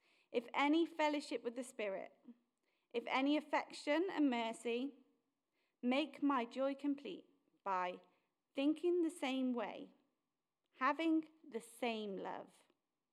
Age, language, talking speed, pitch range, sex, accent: 30-49, English, 110 wpm, 230-305 Hz, female, British